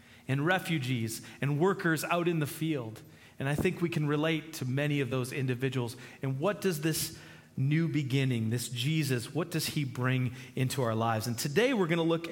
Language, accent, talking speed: English, American, 195 wpm